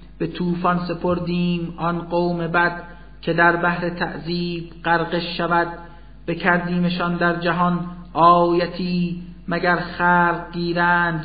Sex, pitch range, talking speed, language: male, 170-175 Hz, 100 wpm, Persian